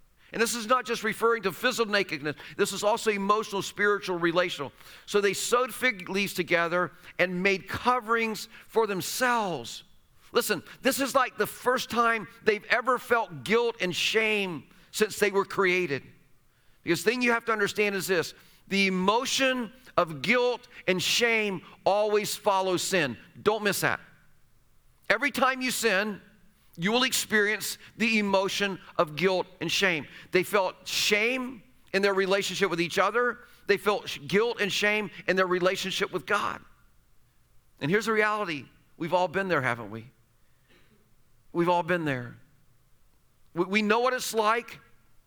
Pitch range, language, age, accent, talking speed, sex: 170-220 Hz, English, 40-59, American, 155 wpm, male